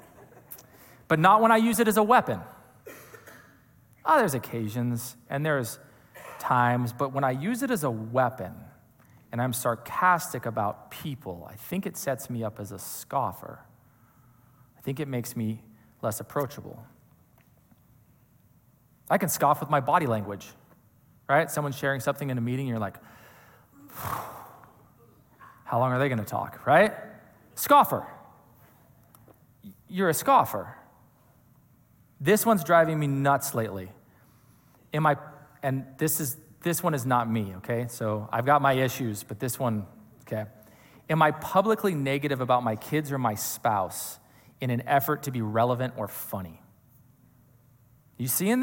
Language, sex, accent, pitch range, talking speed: English, male, American, 120-150 Hz, 145 wpm